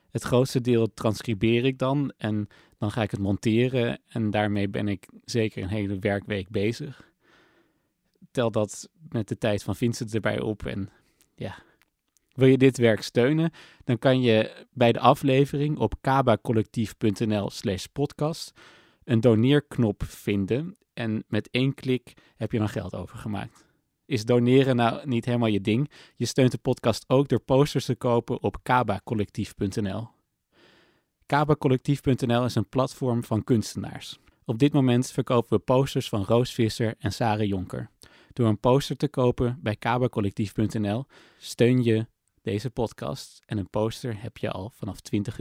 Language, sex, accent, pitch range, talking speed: Dutch, male, Dutch, 110-130 Hz, 150 wpm